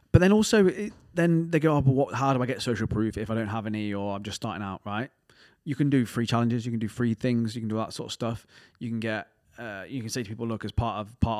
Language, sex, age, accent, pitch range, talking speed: English, male, 20-39, British, 110-130 Hz, 295 wpm